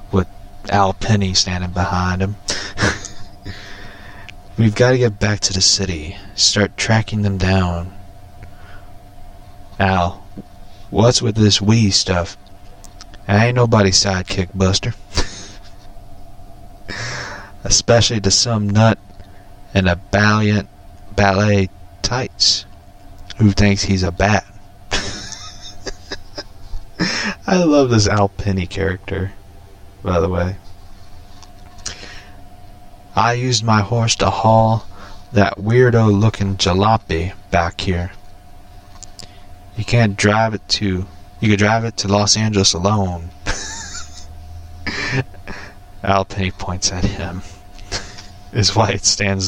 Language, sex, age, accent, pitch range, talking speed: English, male, 30-49, American, 95-100 Hz, 100 wpm